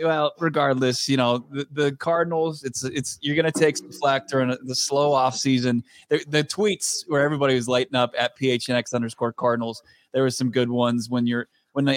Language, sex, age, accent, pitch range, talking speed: English, male, 20-39, American, 125-155 Hz, 200 wpm